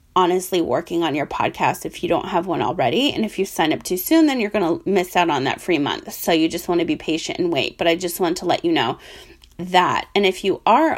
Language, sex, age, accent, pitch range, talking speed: English, female, 30-49, American, 180-250 Hz, 275 wpm